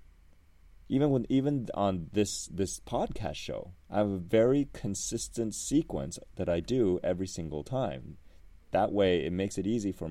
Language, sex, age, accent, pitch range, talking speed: English, male, 30-49, American, 75-95 Hz, 160 wpm